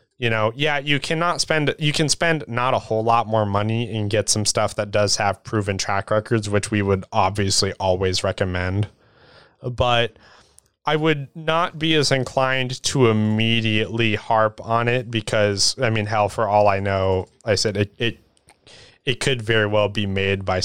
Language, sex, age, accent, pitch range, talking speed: English, male, 20-39, American, 100-115 Hz, 185 wpm